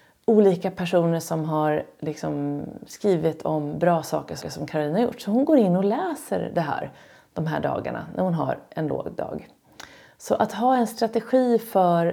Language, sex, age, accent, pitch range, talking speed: Swedish, female, 30-49, native, 160-220 Hz, 180 wpm